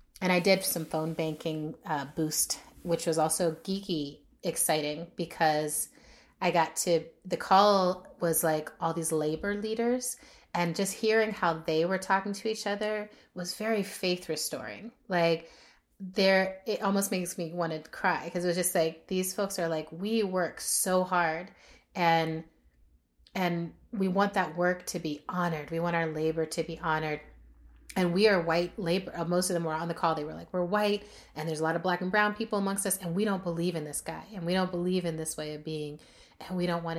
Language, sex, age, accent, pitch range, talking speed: English, female, 30-49, American, 160-190 Hz, 205 wpm